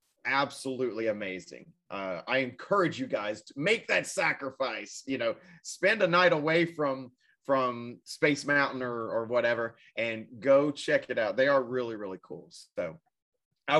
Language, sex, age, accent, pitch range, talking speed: English, male, 30-49, American, 130-165 Hz, 155 wpm